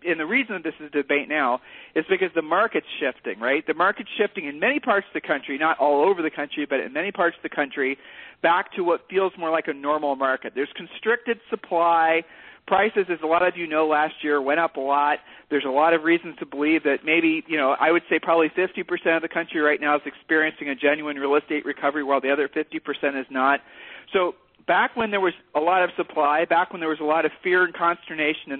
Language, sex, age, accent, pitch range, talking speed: English, male, 40-59, American, 145-180 Hz, 240 wpm